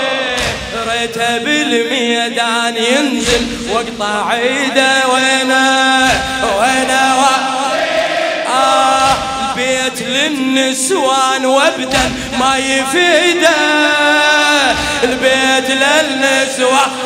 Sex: male